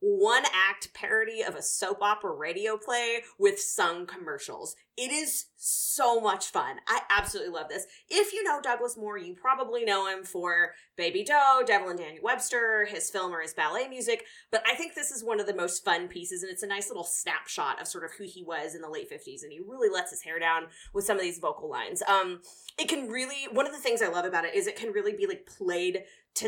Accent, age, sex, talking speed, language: American, 20-39, female, 230 wpm, English